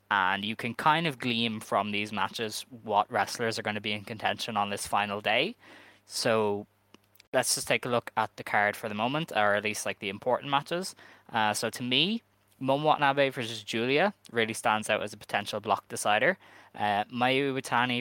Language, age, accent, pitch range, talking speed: English, 10-29, Irish, 105-120 Hz, 195 wpm